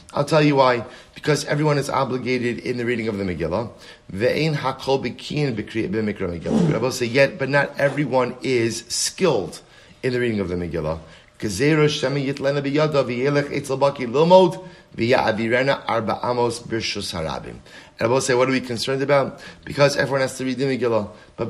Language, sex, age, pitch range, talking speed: English, male, 30-49, 110-140 Hz, 115 wpm